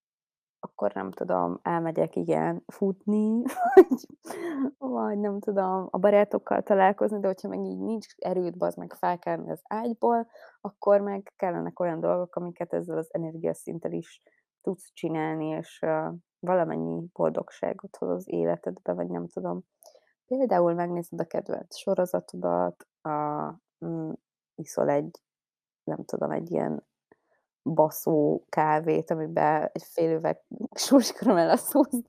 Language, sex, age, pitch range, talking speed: Hungarian, female, 20-39, 150-215 Hz, 125 wpm